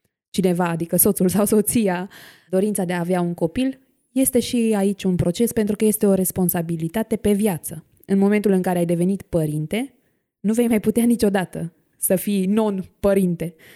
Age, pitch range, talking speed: 20-39, 185-235 Hz, 165 wpm